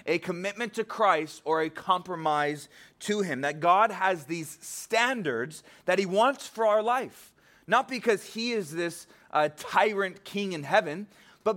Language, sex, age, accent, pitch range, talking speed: English, male, 30-49, American, 160-210 Hz, 160 wpm